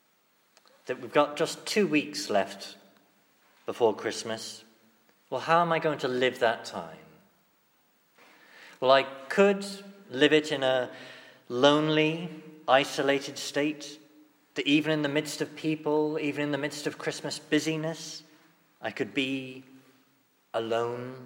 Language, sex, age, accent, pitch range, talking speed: English, male, 40-59, British, 135-160 Hz, 130 wpm